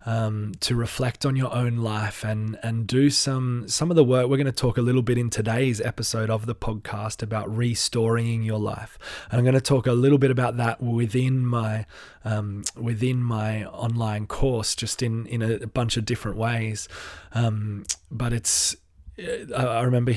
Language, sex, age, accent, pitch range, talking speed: English, male, 20-39, Australian, 110-125 Hz, 185 wpm